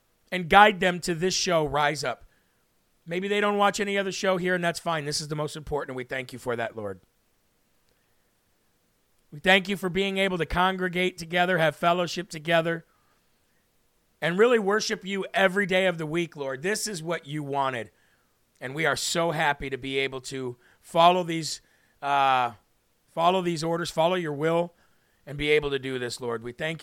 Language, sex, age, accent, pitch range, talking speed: English, male, 40-59, American, 140-180 Hz, 185 wpm